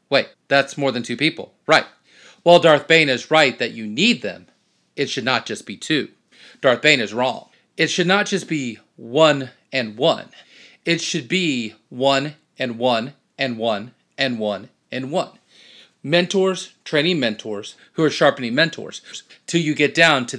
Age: 40-59